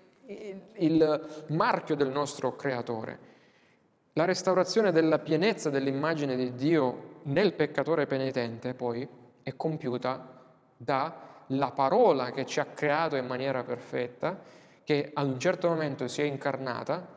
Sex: male